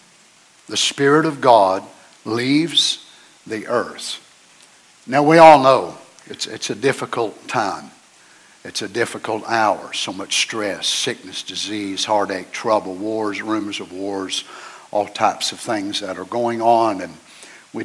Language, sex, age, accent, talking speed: English, male, 60-79, American, 140 wpm